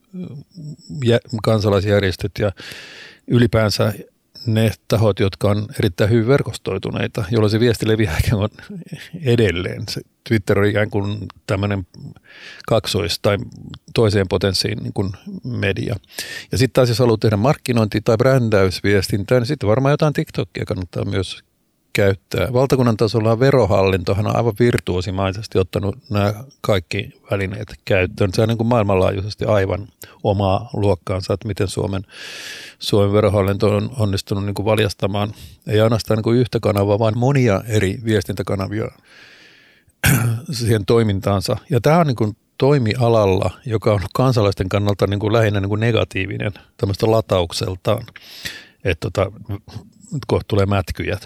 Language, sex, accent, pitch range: Finnish, male, native, 100-120 Hz